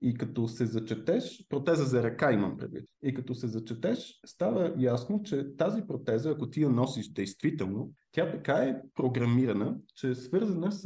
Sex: male